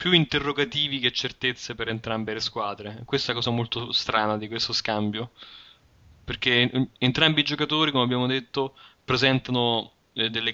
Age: 20-39